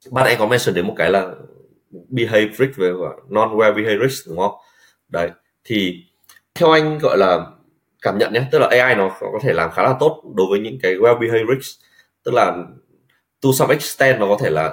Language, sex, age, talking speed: Vietnamese, male, 20-39, 195 wpm